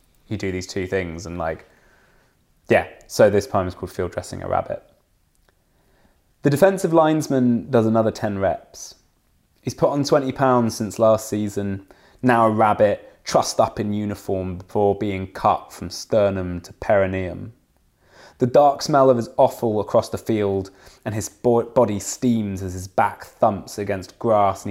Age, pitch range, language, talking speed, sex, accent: 20-39, 95-115 Hz, English, 160 wpm, male, British